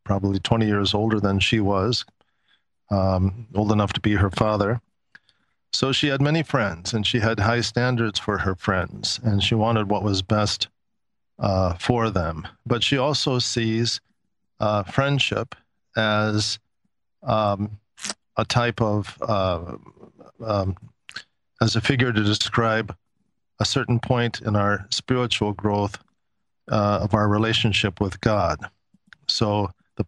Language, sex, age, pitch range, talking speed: English, male, 40-59, 100-120 Hz, 140 wpm